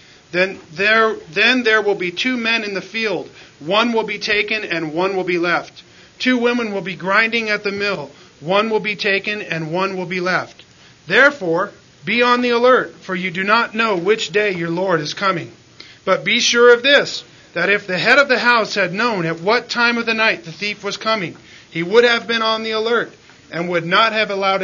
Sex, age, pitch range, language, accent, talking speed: male, 40-59, 165-220 Hz, English, American, 215 wpm